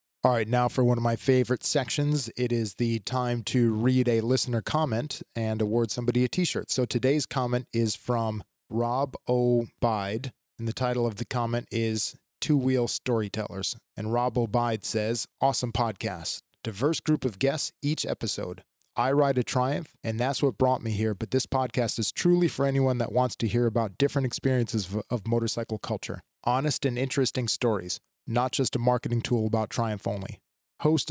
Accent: American